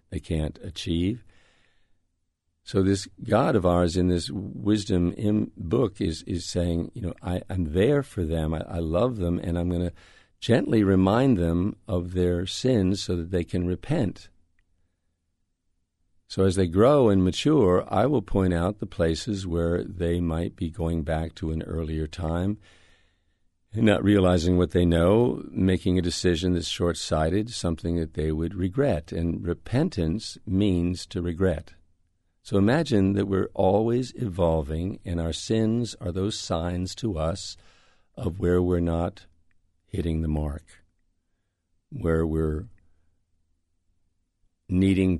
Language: English